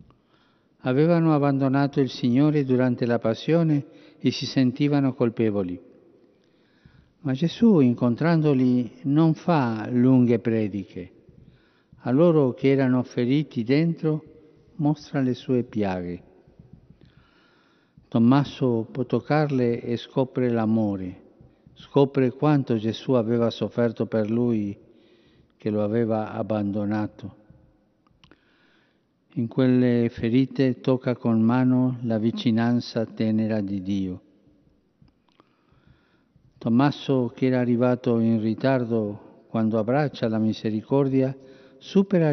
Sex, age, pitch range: male, 50-69, 110-140 Hz